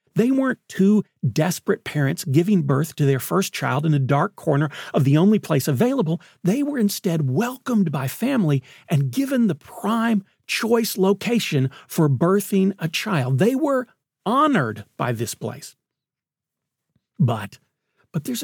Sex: male